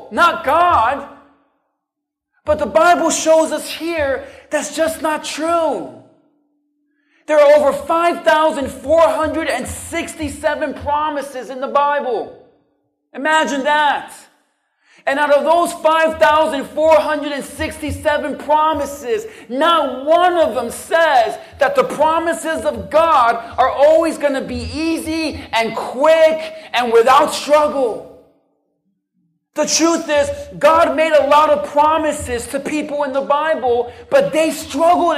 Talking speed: 115 wpm